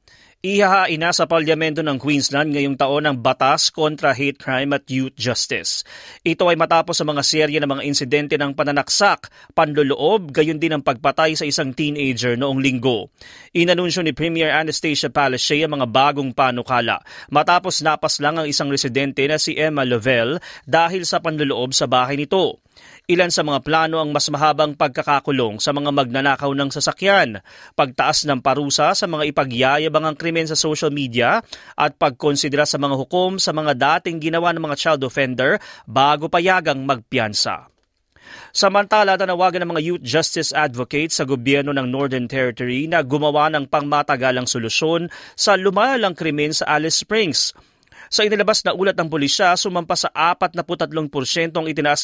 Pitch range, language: 140-170 Hz, English